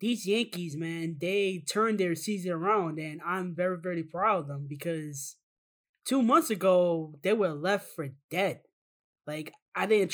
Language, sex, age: English, male, 20-39